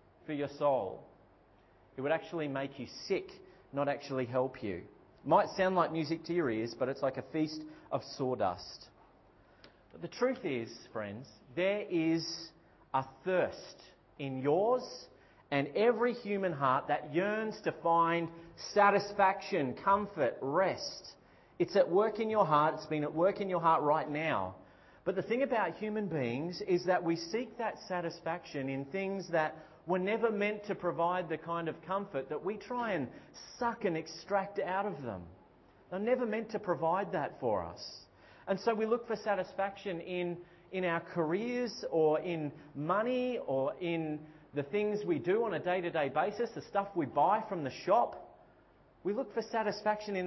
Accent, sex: Australian, male